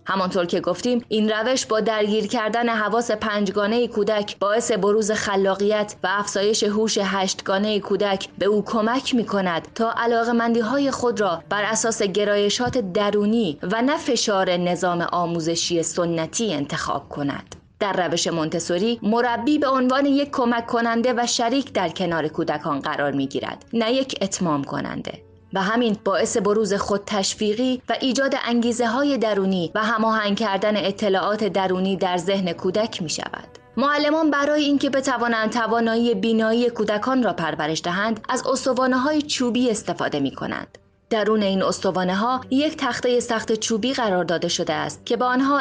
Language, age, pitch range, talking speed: Persian, 20-39, 190-235 Hz, 150 wpm